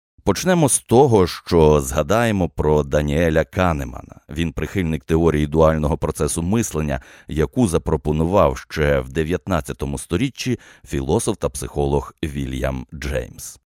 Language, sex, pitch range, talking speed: Ukrainian, male, 70-90 Hz, 110 wpm